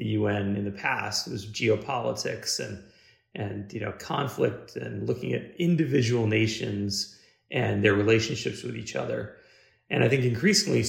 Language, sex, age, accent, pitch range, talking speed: English, male, 40-59, American, 100-120 Hz, 155 wpm